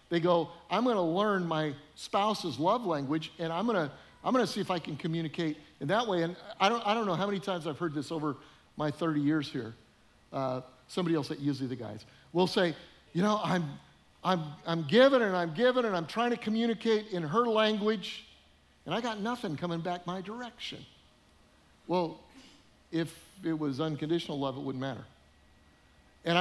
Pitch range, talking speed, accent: 135-190 Hz, 190 wpm, American